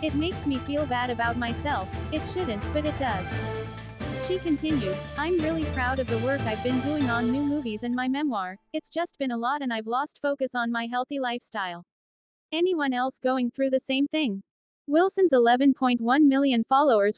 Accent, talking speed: American, 185 wpm